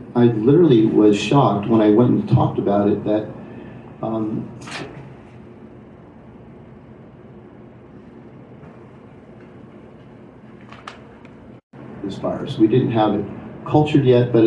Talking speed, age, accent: 90 wpm, 50-69, American